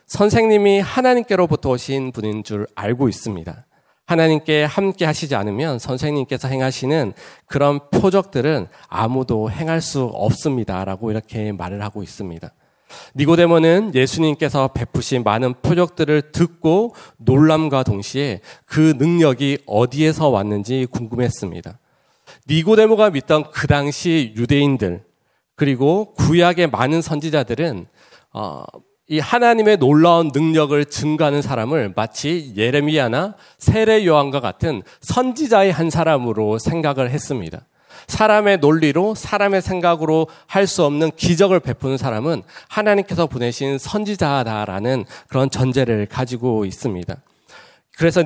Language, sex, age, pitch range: Korean, male, 40-59, 125-170 Hz